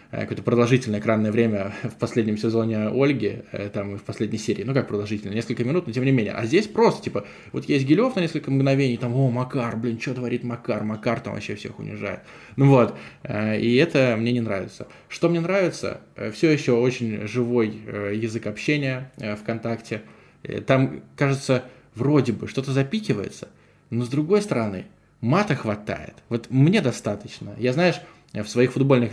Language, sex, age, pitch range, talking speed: Russian, male, 20-39, 110-135 Hz, 165 wpm